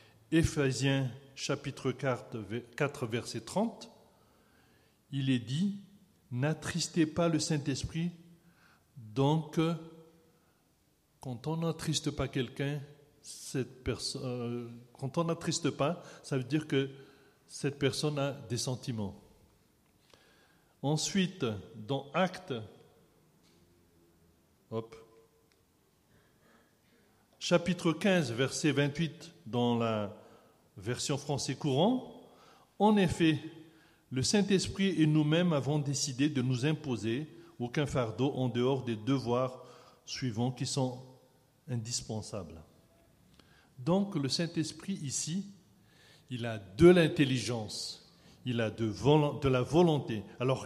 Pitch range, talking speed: 125-165 Hz, 105 wpm